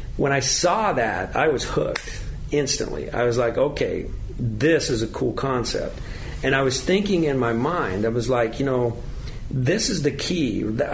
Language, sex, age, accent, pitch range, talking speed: English, male, 50-69, American, 115-145 Hz, 180 wpm